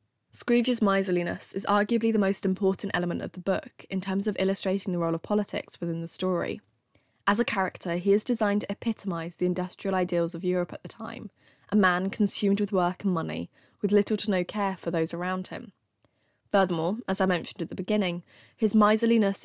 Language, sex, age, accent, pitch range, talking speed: English, female, 10-29, British, 175-205 Hz, 195 wpm